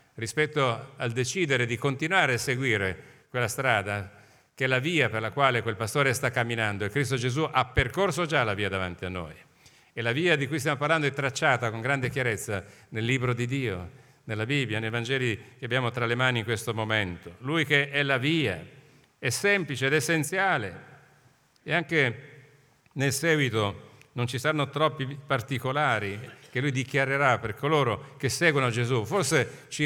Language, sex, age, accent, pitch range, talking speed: Italian, male, 50-69, native, 115-150 Hz, 175 wpm